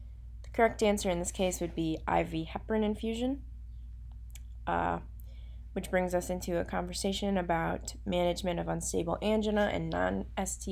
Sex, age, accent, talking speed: female, 20-39, American, 135 wpm